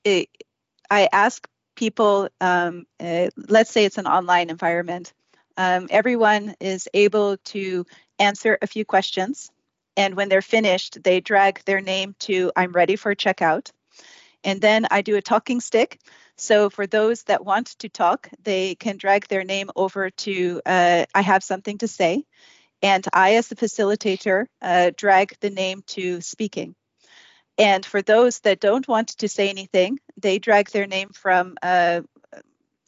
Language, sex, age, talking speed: English, female, 40-59, 155 wpm